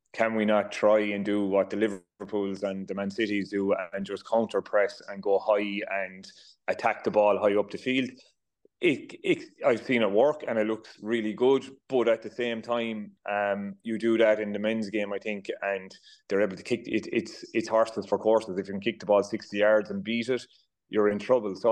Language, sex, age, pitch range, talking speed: English, male, 30-49, 100-115 Hz, 225 wpm